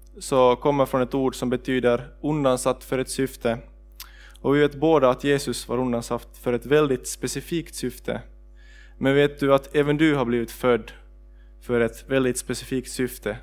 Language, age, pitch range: Swedish, 20-39, 120-140 Hz